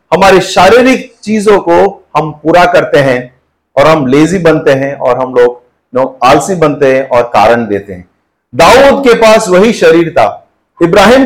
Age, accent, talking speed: 50-69, native, 165 wpm